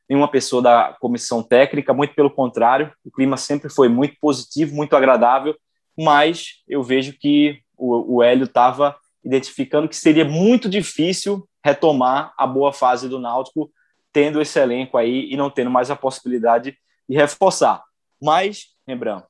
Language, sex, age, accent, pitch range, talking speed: Portuguese, male, 20-39, Brazilian, 125-160 Hz, 150 wpm